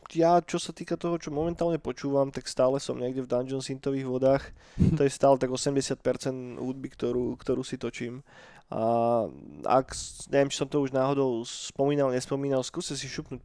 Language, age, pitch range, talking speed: Slovak, 20-39, 125-145 Hz, 170 wpm